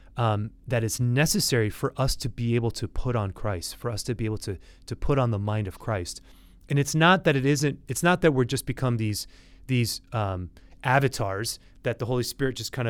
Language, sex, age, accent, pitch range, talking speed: English, male, 30-49, American, 100-130 Hz, 225 wpm